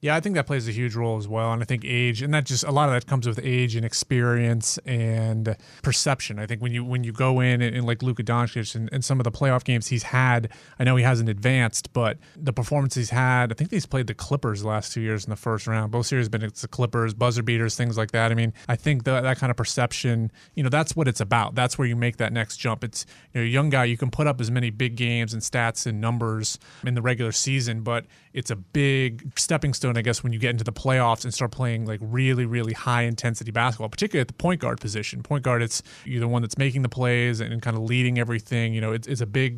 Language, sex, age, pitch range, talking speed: English, male, 30-49, 115-130 Hz, 270 wpm